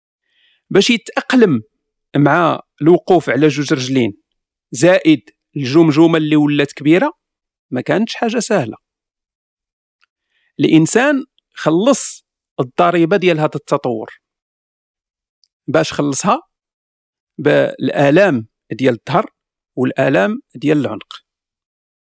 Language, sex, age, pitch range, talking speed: Arabic, male, 50-69, 145-220 Hz, 80 wpm